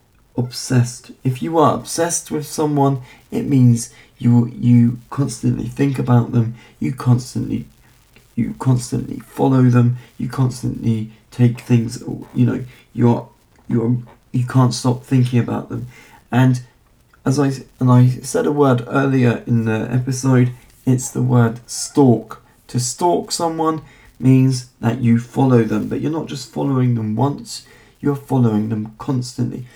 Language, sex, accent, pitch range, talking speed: English, male, British, 120-135 Hz, 140 wpm